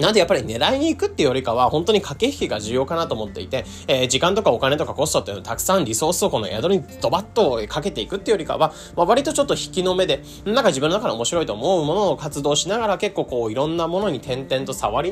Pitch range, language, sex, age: 130-215 Hz, Japanese, male, 20-39